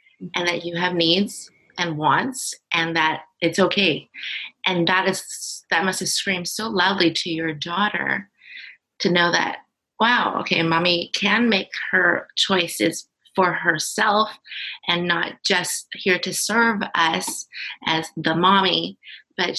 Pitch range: 160-190 Hz